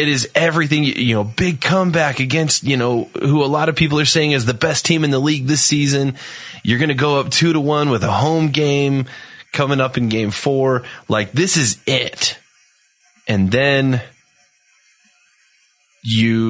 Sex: male